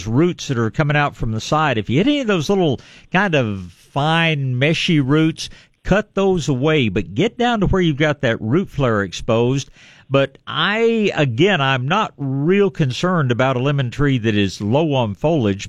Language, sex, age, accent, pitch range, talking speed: English, male, 50-69, American, 115-160 Hz, 190 wpm